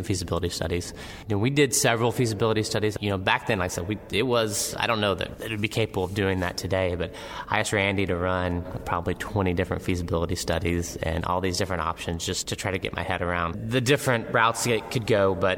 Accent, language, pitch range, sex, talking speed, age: American, English, 90-105 Hz, male, 230 wpm, 20-39